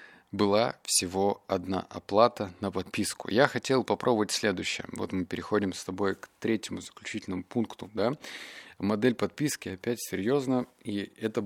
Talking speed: 135 wpm